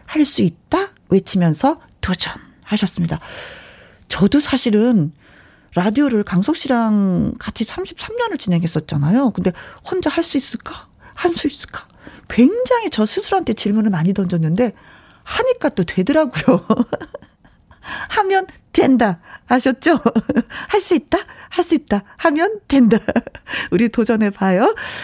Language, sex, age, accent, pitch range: Korean, female, 40-59, native, 190-290 Hz